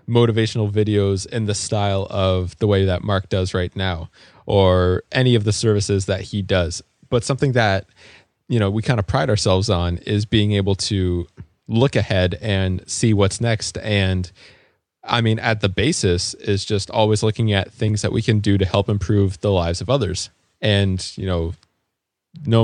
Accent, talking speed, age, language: American, 185 wpm, 20-39, English